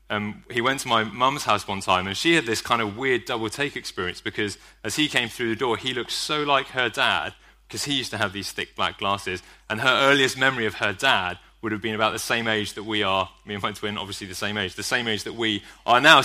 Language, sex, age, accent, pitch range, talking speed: English, male, 30-49, British, 115-150 Hz, 265 wpm